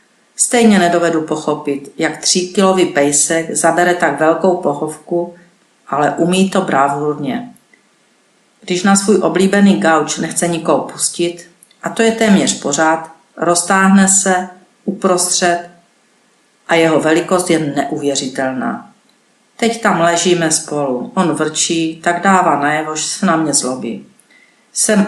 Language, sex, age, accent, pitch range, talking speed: Czech, female, 50-69, native, 155-190 Hz, 120 wpm